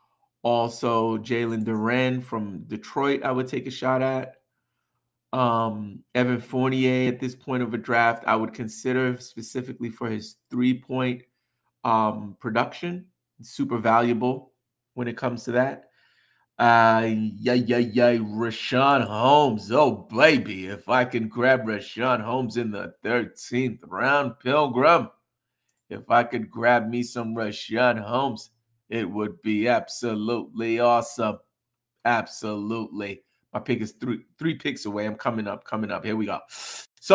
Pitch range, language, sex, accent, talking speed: 115-130 Hz, English, male, American, 135 wpm